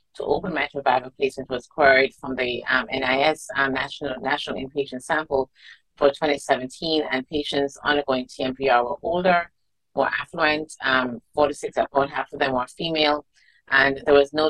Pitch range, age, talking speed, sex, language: 130-155 Hz, 30-49, 160 wpm, female, English